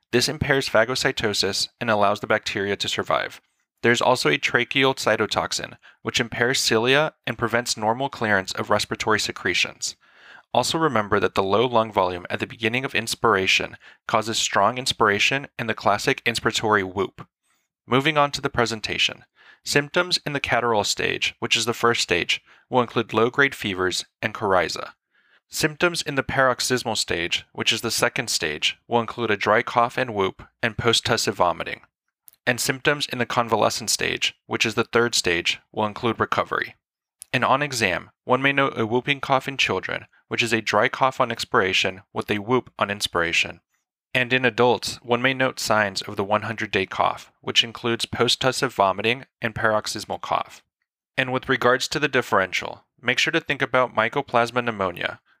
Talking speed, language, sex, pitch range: 165 wpm, English, male, 110-130 Hz